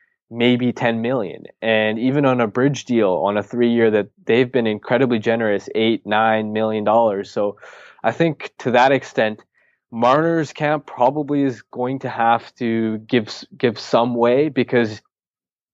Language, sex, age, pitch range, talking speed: English, male, 20-39, 110-130 Hz, 155 wpm